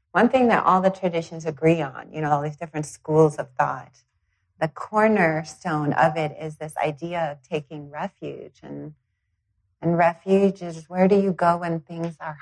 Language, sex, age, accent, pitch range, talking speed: English, female, 30-49, American, 145-170 Hz, 180 wpm